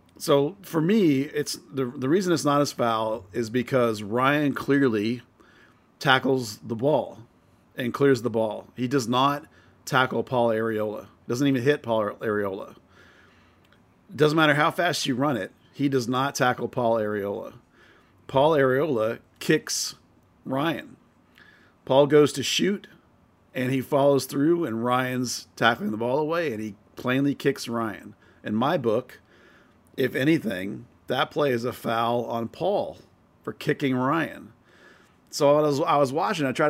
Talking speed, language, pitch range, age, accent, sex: 150 wpm, English, 115-140 Hz, 40-59, American, male